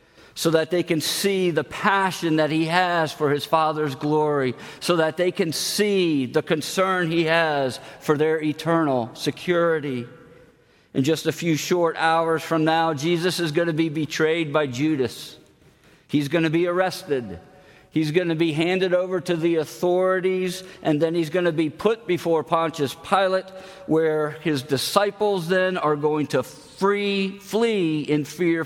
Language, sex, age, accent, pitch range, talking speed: English, male, 50-69, American, 150-180 Hz, 160 wpm